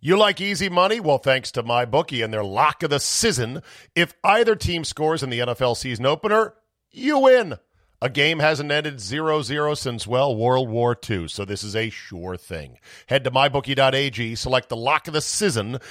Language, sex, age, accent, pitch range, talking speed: English, male, 40-59, American, 120-160 Hz, 190 wpm